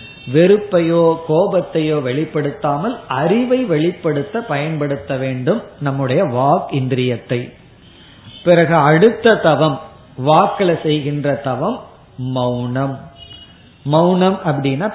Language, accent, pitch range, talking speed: Tamil, native, 140-185 Hz, 55 wpm